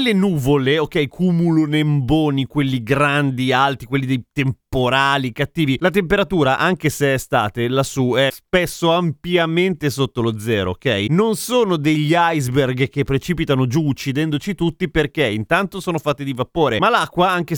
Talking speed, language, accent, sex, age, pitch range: 155 wpm, Italian, native, male, 30-49, 130-170 Hz